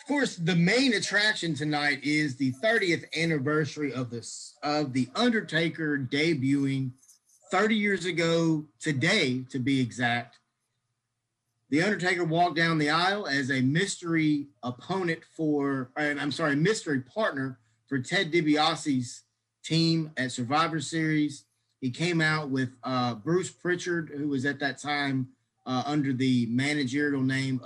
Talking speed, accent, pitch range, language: 130 wpm, American, 125-155 Hz, English